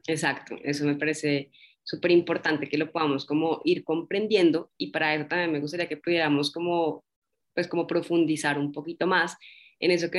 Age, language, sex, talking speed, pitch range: 20-39, Spanish, female, 175 wpm, 155-180 Hz